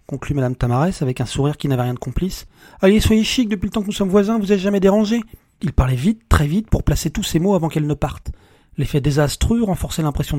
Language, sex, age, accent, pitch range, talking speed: French, male, 40-59, French, 130-175 Hz, 250 wpm